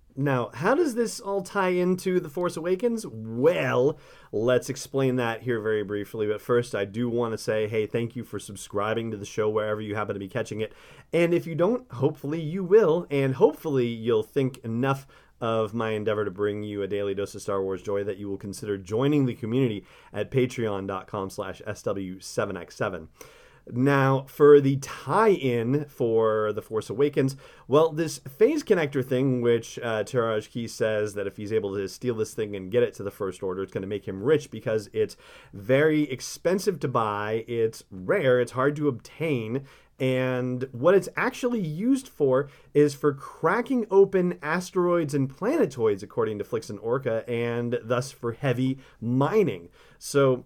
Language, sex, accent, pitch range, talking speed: English, male, American, 110-155 Hz, 175 wpm